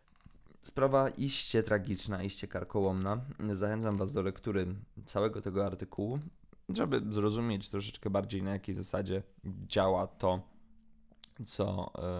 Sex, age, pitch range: male, 20-39, 95-110 Hz